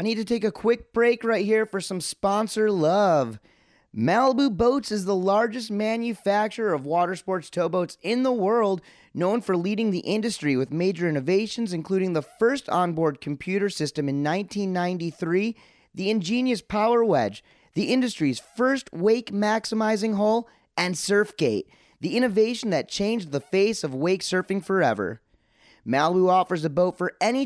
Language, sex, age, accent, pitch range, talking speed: English, male, 30-49, American, 175-220 Hz, 150 wpm